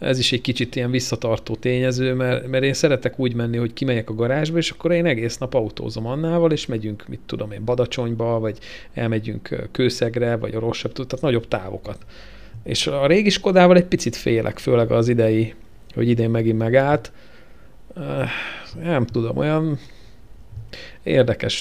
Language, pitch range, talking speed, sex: Hungarian, 110-130 Hz, 155 wpm, male